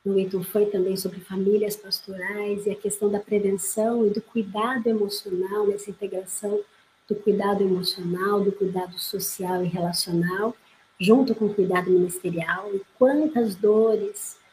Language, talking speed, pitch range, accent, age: Portuguese, 135 wpm, 190-215 Hz, Brazilian, 50-69